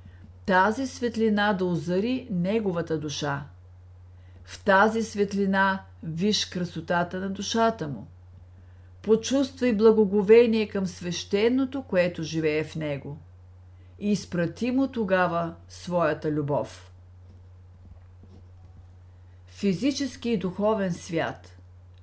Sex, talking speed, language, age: female, 85 wpm, Bulgarian, 50-69